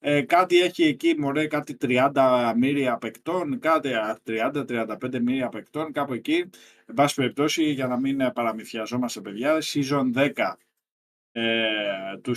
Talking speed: 130 wpm